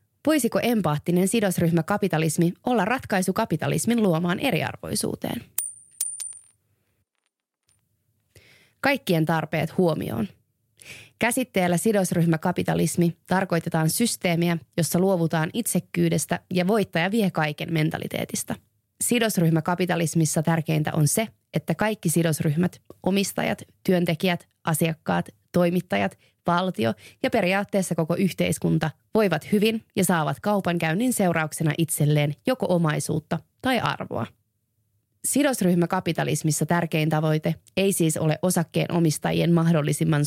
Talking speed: 90 wpm